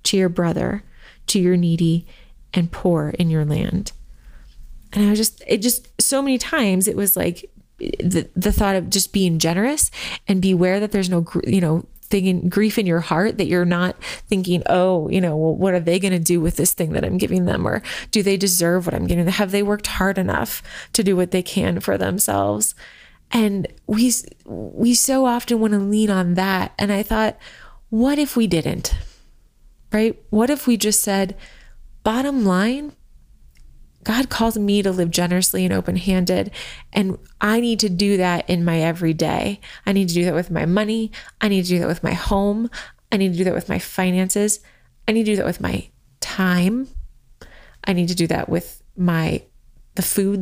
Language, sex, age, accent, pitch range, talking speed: English, female, 20-39, American, 175-215 Hz, 200 wpm